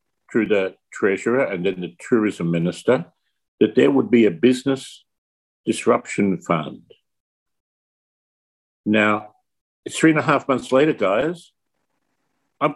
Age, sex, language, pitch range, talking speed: 50-69, male, English, 105-160 Hz, 120 wpm